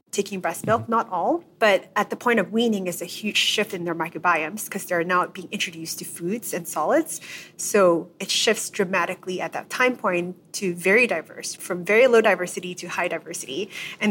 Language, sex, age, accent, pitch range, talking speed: English, female, 30-49, American, 180-215 Hz, 195 wpm